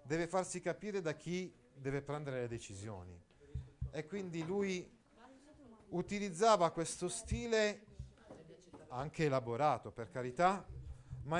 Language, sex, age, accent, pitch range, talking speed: Italian, male, 40-59, native, 125-185 Hz, 105 wpm